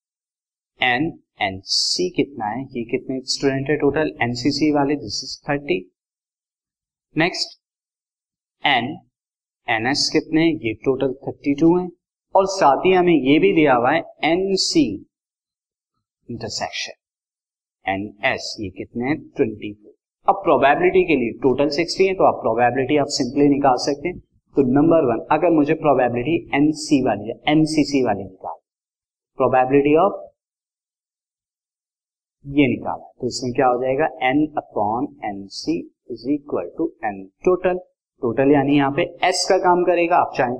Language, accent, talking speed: Hindi, native, 145 wpm